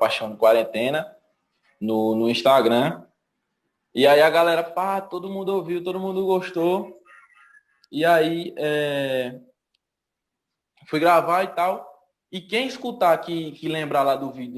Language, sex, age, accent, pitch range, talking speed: Portuguese, male, 20-39, Brazilian, 160-220 Hz, 130 wpm